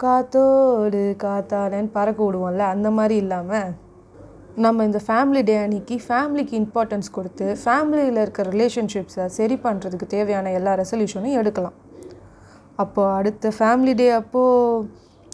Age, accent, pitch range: 20-39, native, 195-230 Hz